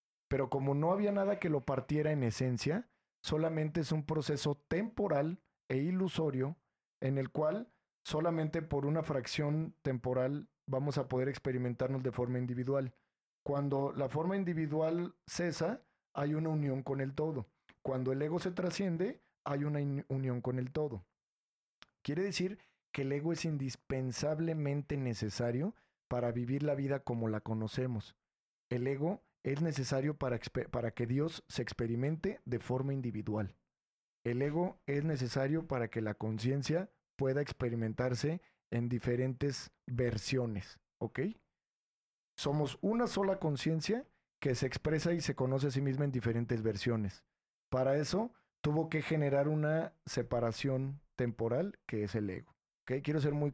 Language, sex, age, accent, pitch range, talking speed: Spanish, male, 40-59, Mexican, 125-155 Hz, 140 wpm